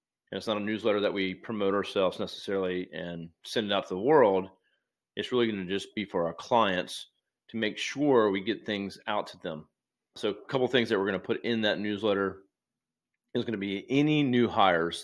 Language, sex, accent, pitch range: English, male, American, 95-115 Hz